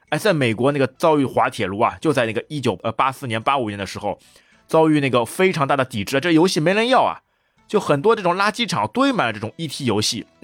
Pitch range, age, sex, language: 110-150 Hz, 20-39, male, Chinese